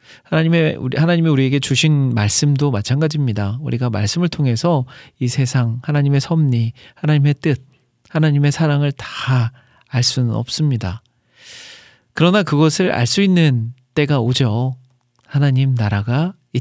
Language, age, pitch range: Korean, 40-59, 120-150 Hz